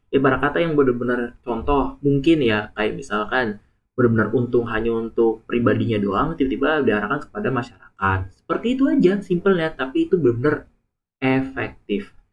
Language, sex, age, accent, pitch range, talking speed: Indonesian, male, 20-39, native, 105-140 Hz, 135 wpm